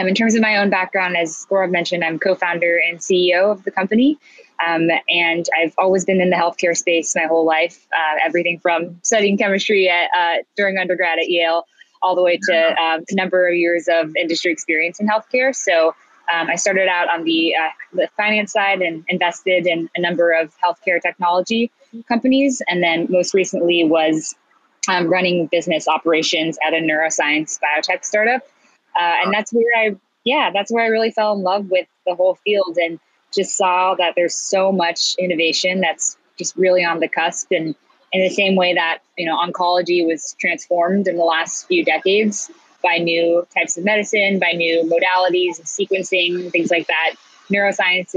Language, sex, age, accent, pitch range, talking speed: English, female, 20-39, American, 170-195 Hz, 185 wpm